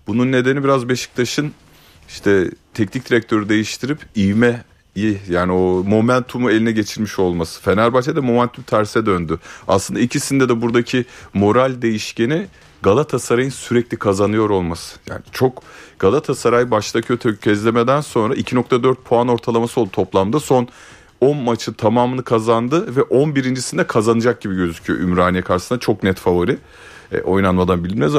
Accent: native